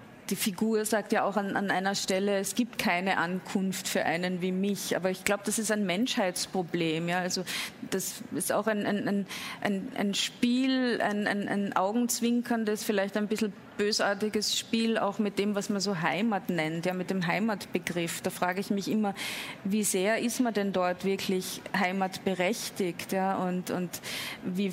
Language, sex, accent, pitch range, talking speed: German, female, German, 190-235 Hz, 175 wpm